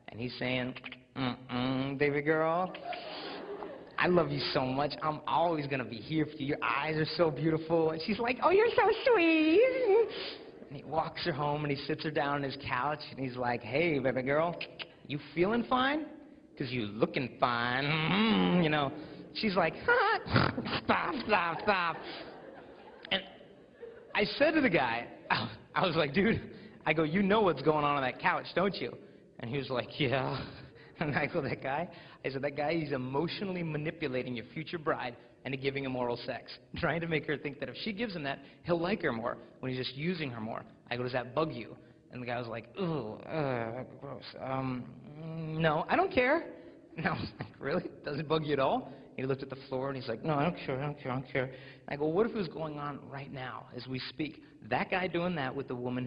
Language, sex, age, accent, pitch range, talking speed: Italian, male, 30-49, American, 130-170 Hz, 215 wpm